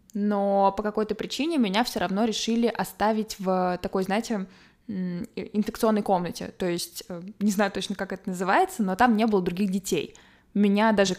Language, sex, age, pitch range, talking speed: Russian, female, 20-39, 190-220 Hz, 160 wpm